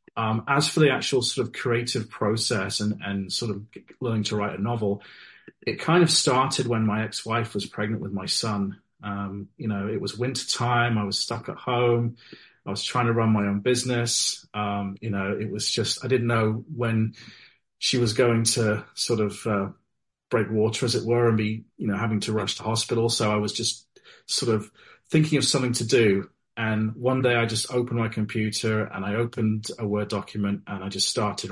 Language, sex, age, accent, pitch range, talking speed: English, male, 30-49, British, 105-120 Hz, 210 wpm